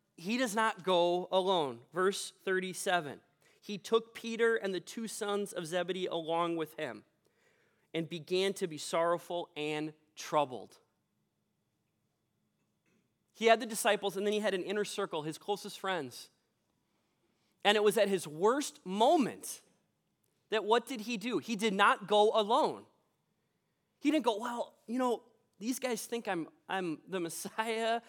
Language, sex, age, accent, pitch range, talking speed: English, male, 30-49, American, 180-235 Hz, 150 wpm